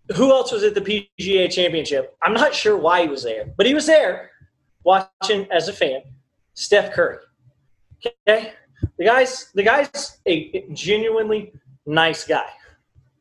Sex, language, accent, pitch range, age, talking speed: male, English, American, 170-245 Hz, 30-49, 150 wpm